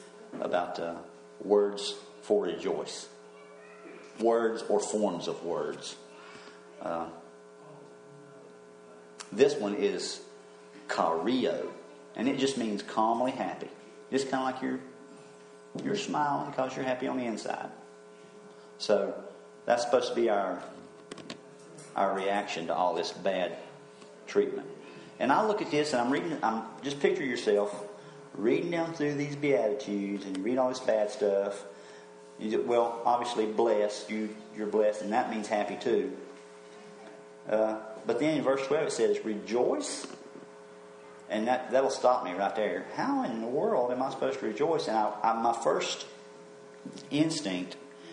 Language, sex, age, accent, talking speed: English, male, 50-69, American, 140 wpm